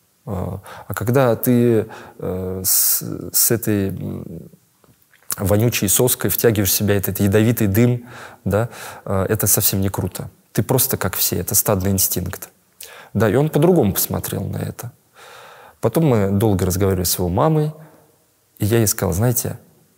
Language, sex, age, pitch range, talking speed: Russian, male, 20-39, 100-125 Hz, 140 wpm